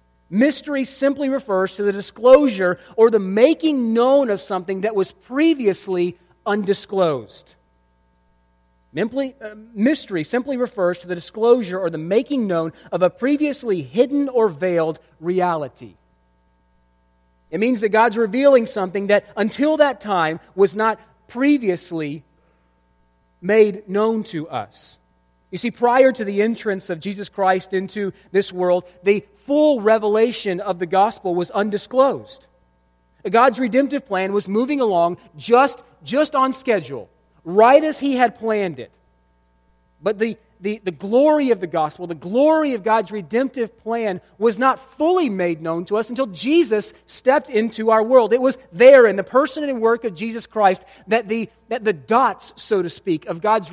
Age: 30-49